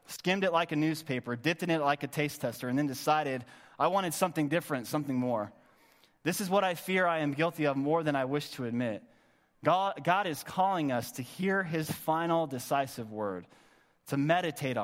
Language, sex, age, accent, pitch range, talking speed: English, male, 20-39, American, 140-185 Hz, 200 wpm